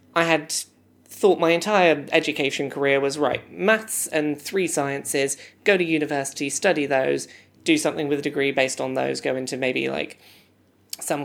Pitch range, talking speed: 145-205 Hz, 165 wpm